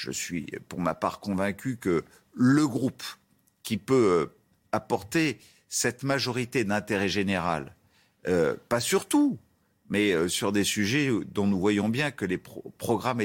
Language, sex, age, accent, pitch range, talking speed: French, male, 50-69, French, 105-140 Hz, 145 wpm